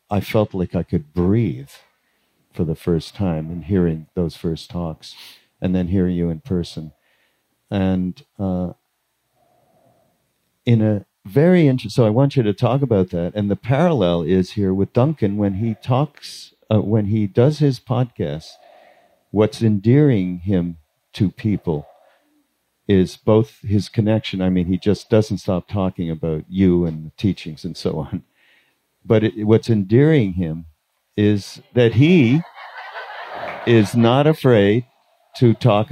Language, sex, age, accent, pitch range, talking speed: English, male, 50-69, American, 90-115 Hz, 145 wpm